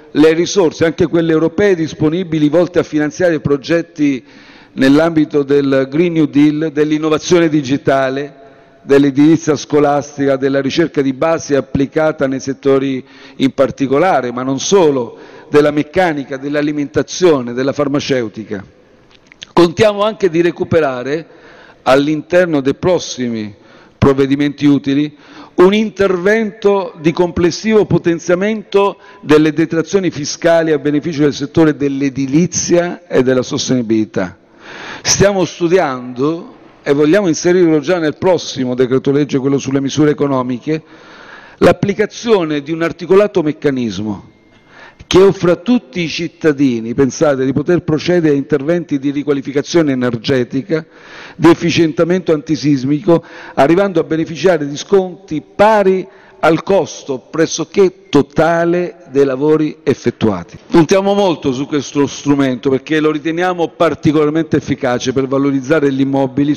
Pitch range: 140-170 Hz